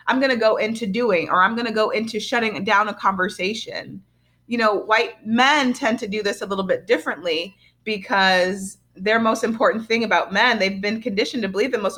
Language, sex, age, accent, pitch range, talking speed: English, female, 30-49, American, 180-230 Hz, 210 wpm